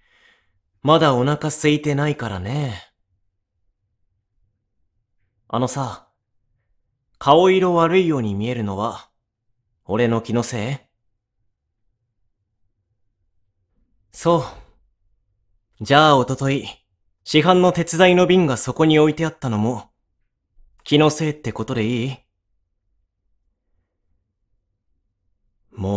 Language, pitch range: Japanese, 100-140 Hz